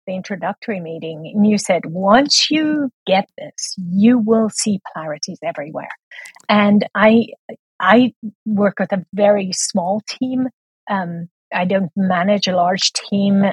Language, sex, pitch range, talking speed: English, female, 185-215 Hz, 140 wpm